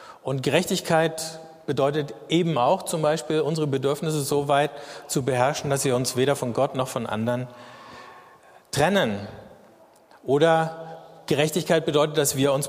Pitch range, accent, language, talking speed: 125-155 Hz, German, German, 135 wpm